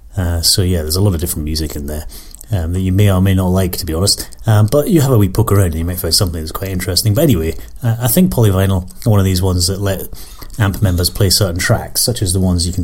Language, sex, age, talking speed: English, male, 30-49, 290 wpm